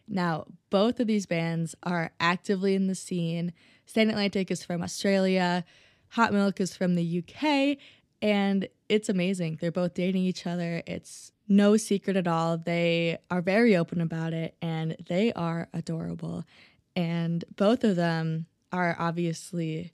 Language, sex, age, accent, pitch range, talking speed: English, female, 20-39, American, 170-200 Hz, 150 wpm